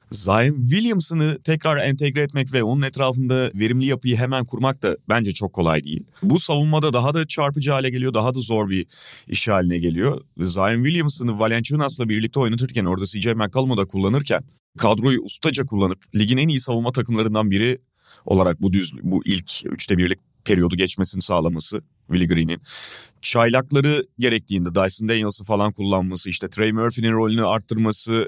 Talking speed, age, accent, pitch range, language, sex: 155 wpm, 30-49, native, 100-130 Hz, Turkish, male